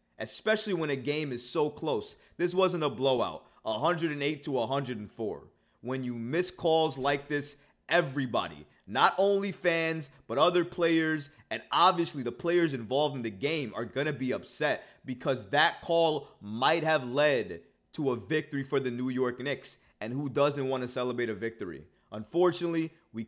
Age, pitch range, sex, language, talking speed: 20-39, 125-160 Hz, male, English, 160 wpm